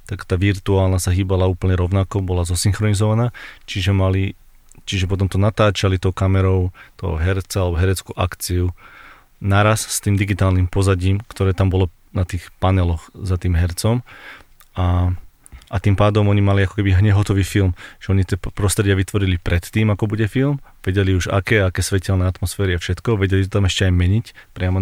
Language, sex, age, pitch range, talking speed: Slovak, male, 30-49, 90-105 Hz, 170 wpm